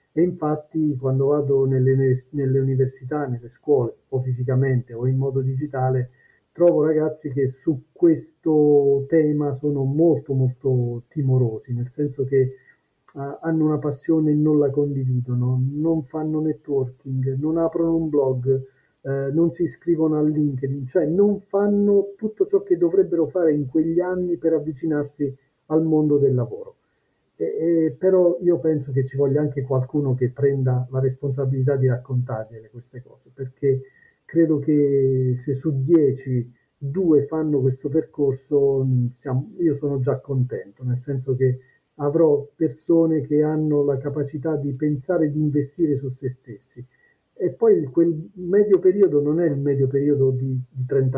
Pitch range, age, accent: 130-155 Hz, 50-69, native